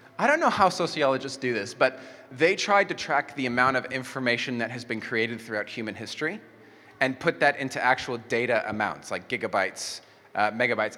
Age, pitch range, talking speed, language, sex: 20-39, 120-150 Hz, 185 wpm, English, male